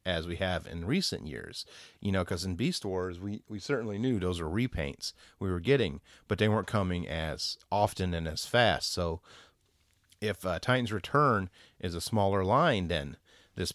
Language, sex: English, male